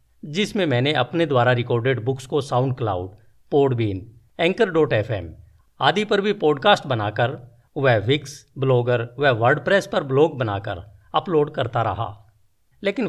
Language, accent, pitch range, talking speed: Hindi, native, 110-170 Hz, 140 wpm